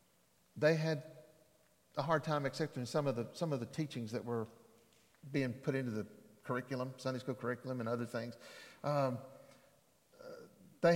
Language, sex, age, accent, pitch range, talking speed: English, male, 50-69, American, 120-155 Hz, 155 wpm